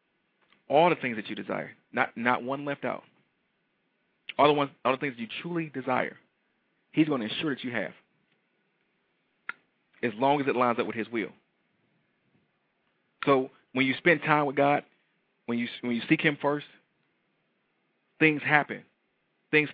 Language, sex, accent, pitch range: English, male, American, 125-150 Hz